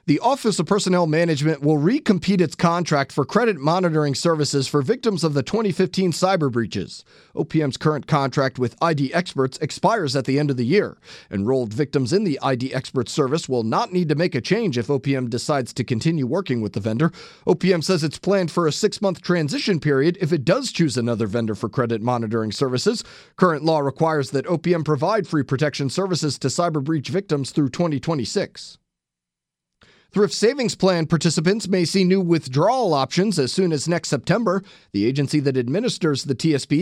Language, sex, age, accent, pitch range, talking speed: English, male, 30-49, American, 140-190 Hz, 180 wpm